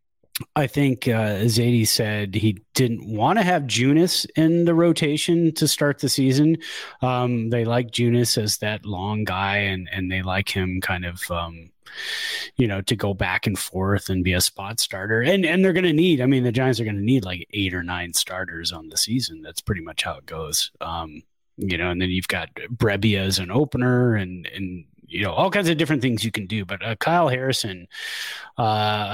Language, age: English, 30-49